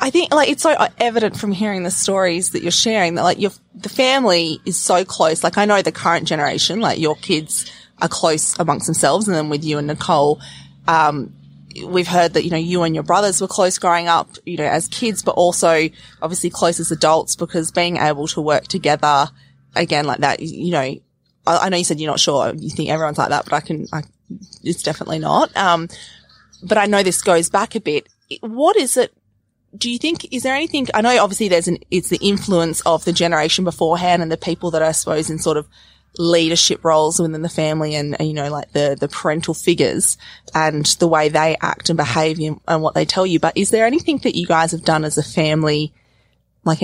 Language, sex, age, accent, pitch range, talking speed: English, female, 20-39, Australian, 155-185 Hz, 225 wpm